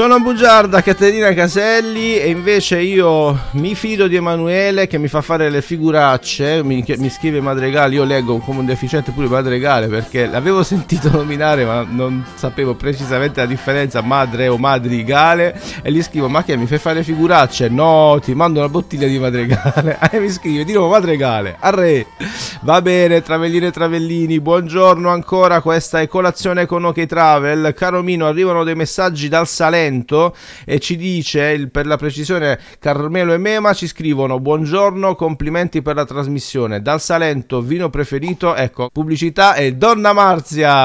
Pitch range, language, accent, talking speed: 130-175 Hz, Italian, native, 165 wpm